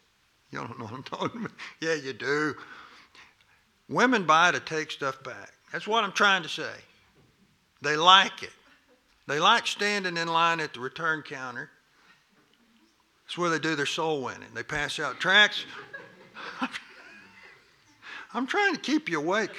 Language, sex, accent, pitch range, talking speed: English, male, American, 155-230 Hz, 155 wpm